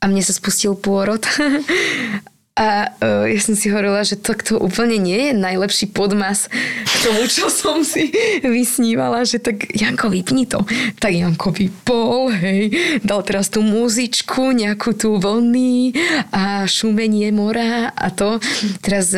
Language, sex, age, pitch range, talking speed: Slovak, female, 20-39, 185-220 Hz, 145 wpm